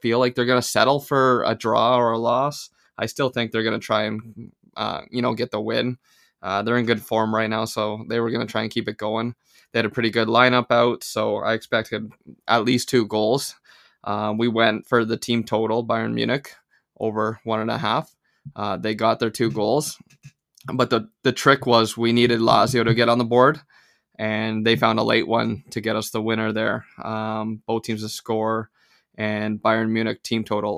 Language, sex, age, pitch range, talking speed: English, male, 20-39, 110-125 Hz, 220 wpm